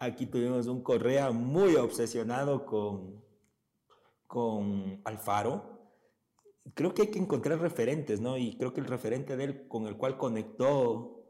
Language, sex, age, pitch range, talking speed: Spanish, male, 40-59, 110-140 Hz, 145 wpm